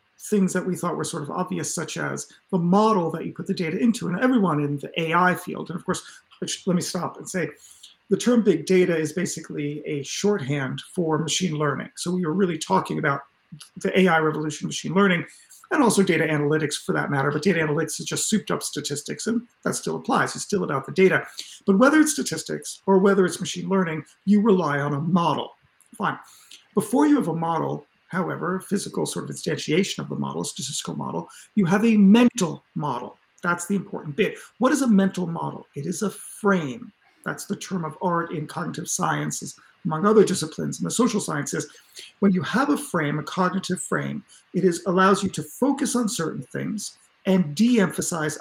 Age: 40-59